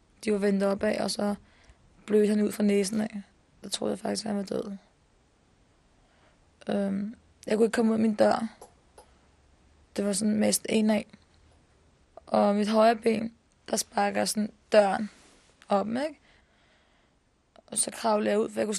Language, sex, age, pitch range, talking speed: Danish, female, 20-39, 195-225 Hz, 165 wpm